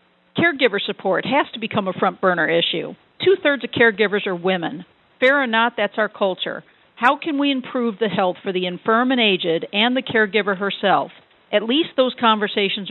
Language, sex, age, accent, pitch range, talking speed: English, female, 50-69, American, 200-255 Hz, 175 wpm